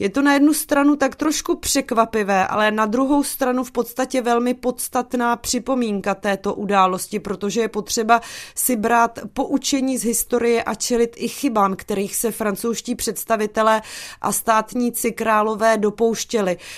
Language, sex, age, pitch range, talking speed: Czech, female, 20-39, 205-245 Hz, 140 wpm